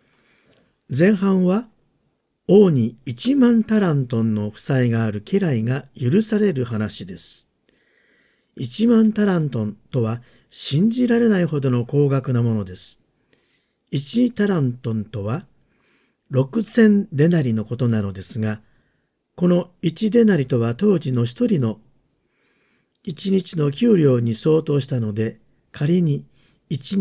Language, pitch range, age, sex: Japanese, 120-195 Hz, 50-69, male